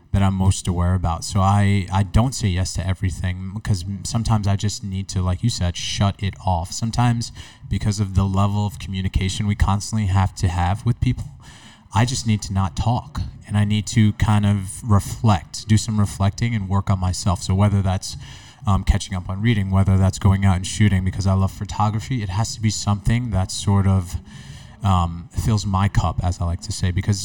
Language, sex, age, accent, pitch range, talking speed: English, male, 20-39, American, 95-110 Hz, 210 wpm